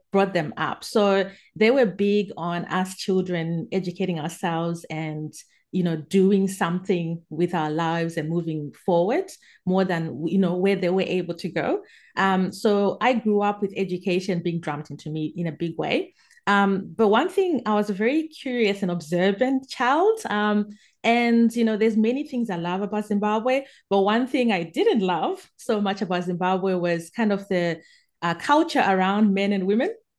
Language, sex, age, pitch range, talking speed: English, female, 30-49, 170-210 Hz, 180 wpm